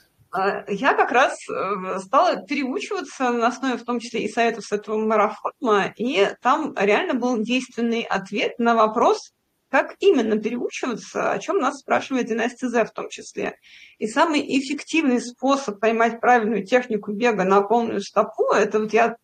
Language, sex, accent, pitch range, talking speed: Russian, female, native, 225-270 Hz, 155 wpm